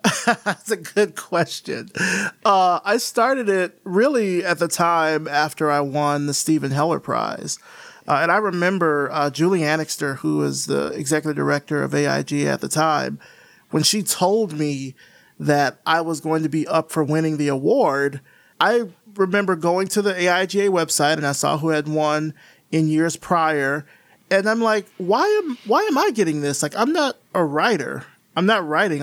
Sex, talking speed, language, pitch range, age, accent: male, 175 wpm, English, 150-195 Hz, 30-49, American